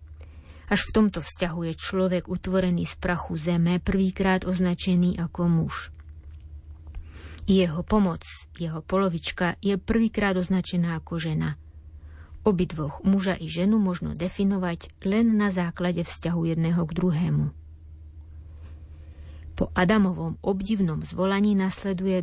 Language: Slovak